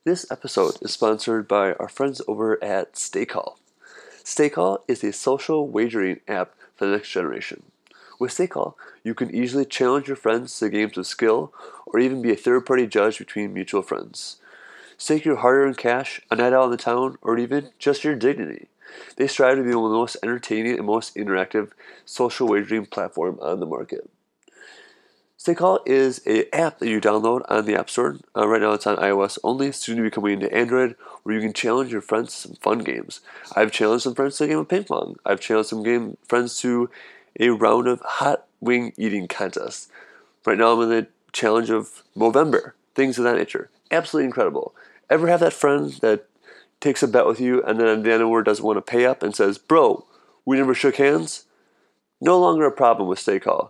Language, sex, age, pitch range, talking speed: English, male, 30-49, 110-145 Hz, 200 wpm